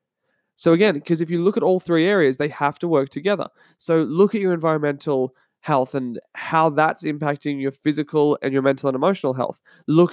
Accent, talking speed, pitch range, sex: Australian, 200 wpm, 135-170 Hz, male